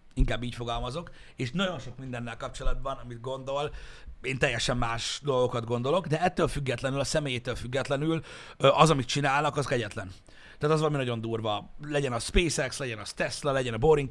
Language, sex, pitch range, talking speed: Hungarian, male, 115-140 Hz, 170 wpm